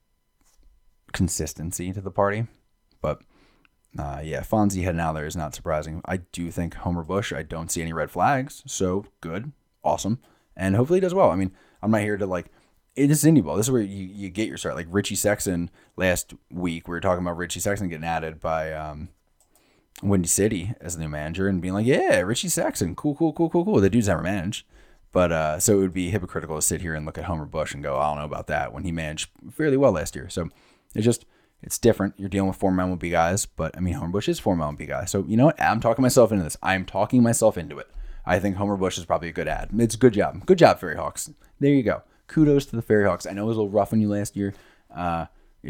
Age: 20-39